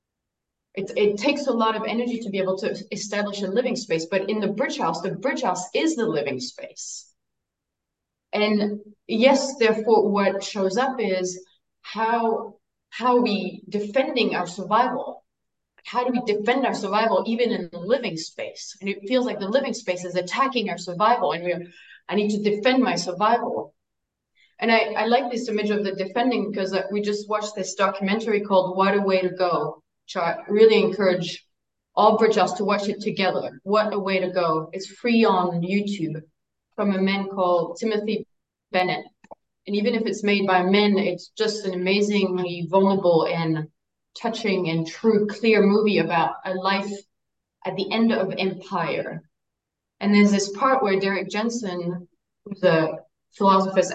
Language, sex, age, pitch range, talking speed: English, female, 20-39, 185-225 Hz, 170 wpm